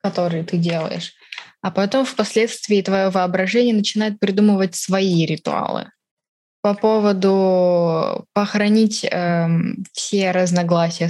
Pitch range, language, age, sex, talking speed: 175-215 Hz, Russian, 20-39, female, 95 wpm